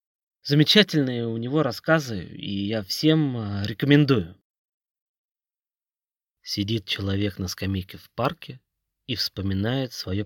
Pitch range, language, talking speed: 95-130 Hz, Russian, 100 wpm